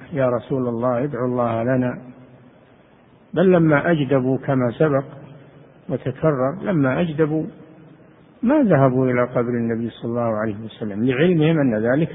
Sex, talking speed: male, 130 wpm